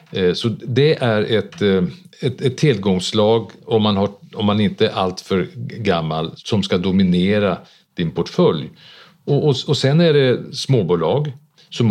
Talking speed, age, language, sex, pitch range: 140 wpm, 50-69, Swedish, male, 95-145 Hz